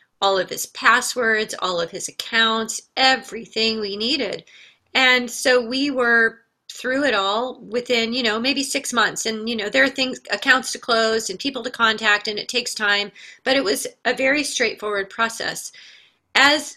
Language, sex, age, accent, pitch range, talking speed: English, female, 30-49, American, 195-240 Hz, 175 wpm